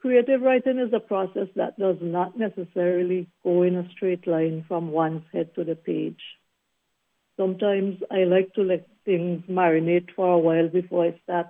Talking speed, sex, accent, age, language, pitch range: 170 wpm, female, Indian, 60-79, English, 165-190 Hz